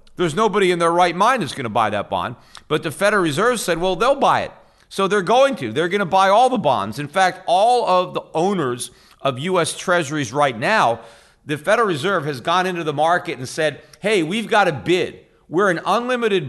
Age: 50-69